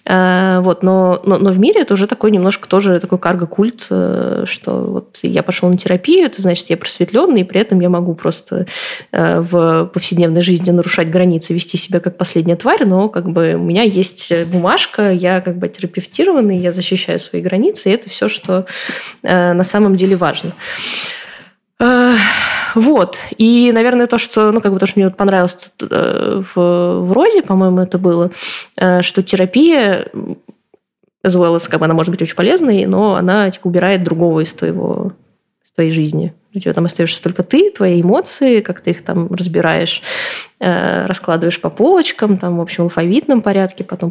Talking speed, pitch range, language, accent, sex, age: 175 wpm, 175-205 Hz, Russian, native, female, 20-39